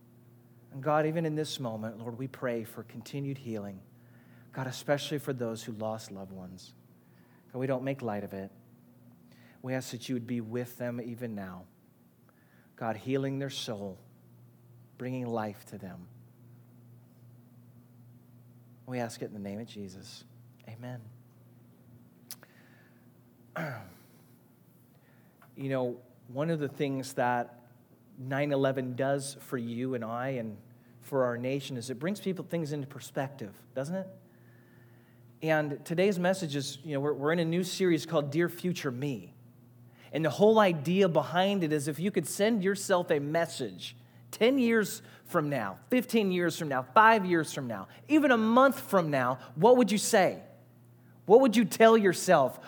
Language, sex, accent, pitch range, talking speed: English, male, American, 120-160 Hz, 155 wpm